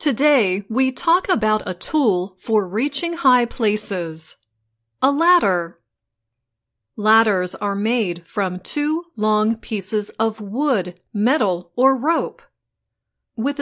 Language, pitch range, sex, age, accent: Chinese, 185-250 Hz, female, 30-49, American